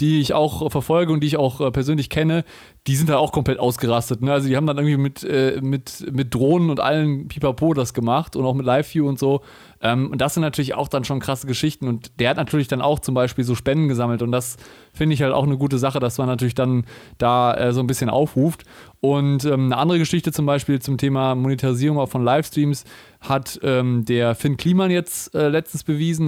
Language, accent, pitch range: German, German, 130-150 Hz